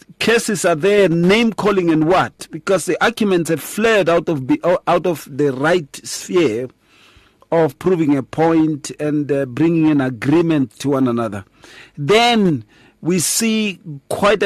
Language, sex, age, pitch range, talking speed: English, male, 50-69, 130-170 Hz, 145 wpm